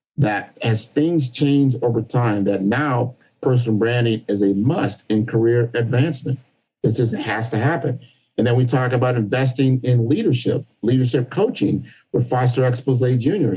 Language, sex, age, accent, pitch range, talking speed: English, male, 50-69, American, 115-140 Hz, 155 wpm